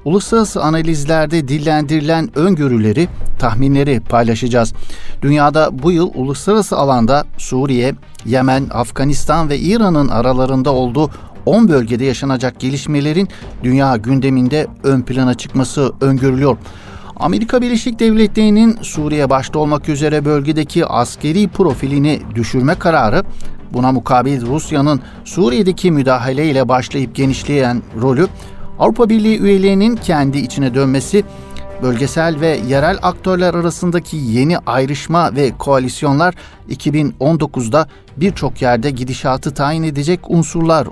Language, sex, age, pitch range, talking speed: Turkish, male, 60-79, 130-170 Hz, 105 wpm